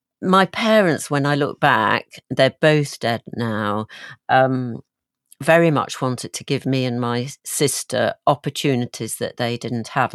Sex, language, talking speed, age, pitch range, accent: female, English, 150 wpm, 50-69, 120-145 Hz, British